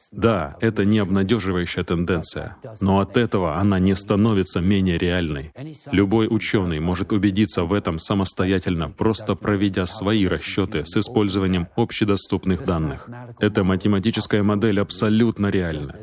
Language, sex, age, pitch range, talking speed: Russian, male, 20-39, 90-110 Hz, 125 wpm